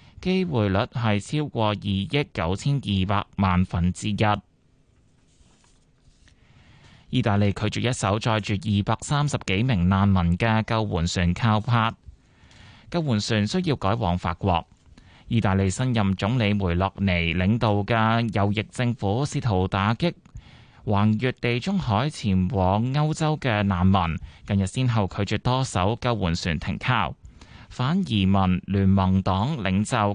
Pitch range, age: 95-120 Hz, 20-39